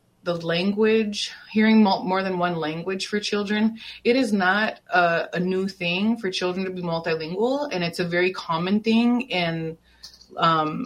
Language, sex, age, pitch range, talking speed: English, female, 20-39, 160-190 Hz, 160 wpm